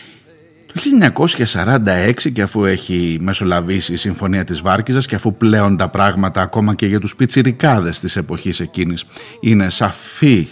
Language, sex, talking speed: Greek, male, 145 wpm